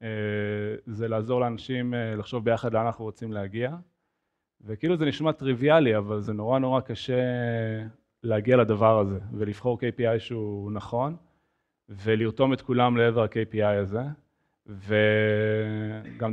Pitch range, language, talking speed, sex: 110-140 Hz, Hebrew, 120 wpm, male